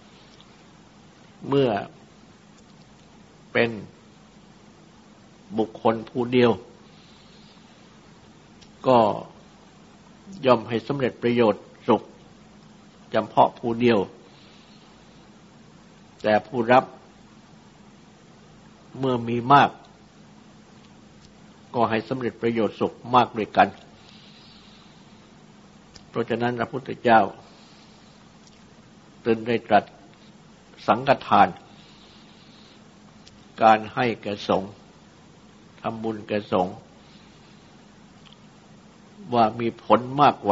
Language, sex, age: Thai, male, 60-79